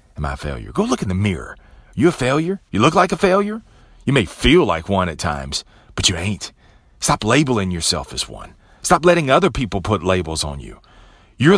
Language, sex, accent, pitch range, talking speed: English, male, American, 90-140 Hz, 210 wpm